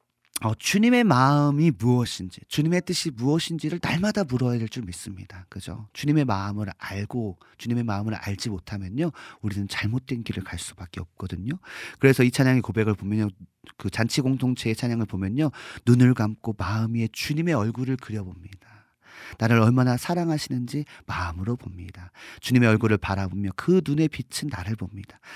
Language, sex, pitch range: Korean, male, 100-140 Hz